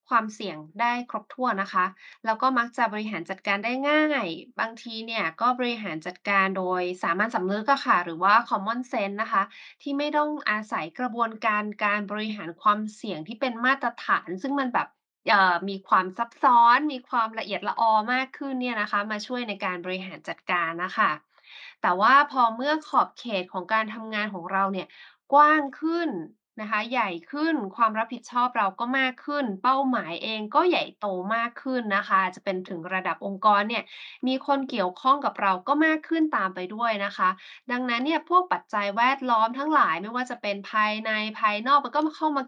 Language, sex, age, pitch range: Thai, female, 20-39, 200-260 Hz